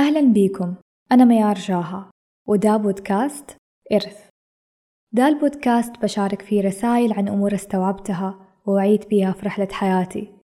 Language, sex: Arabic, female